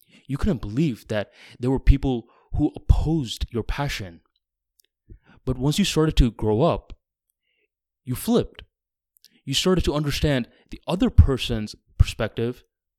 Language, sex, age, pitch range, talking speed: English, male, 20-39, 105-140 Hz, 130 wpm